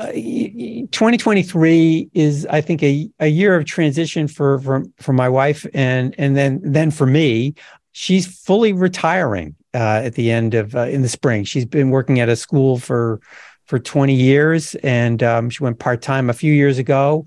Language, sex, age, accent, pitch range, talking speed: English, male, 50-69, American, 130-165 Hz, 190 wpm